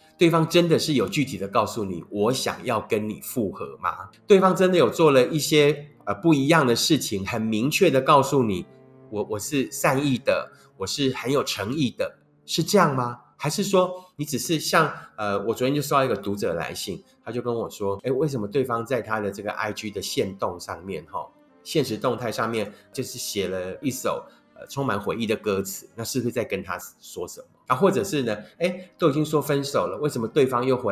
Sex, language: male, Chinese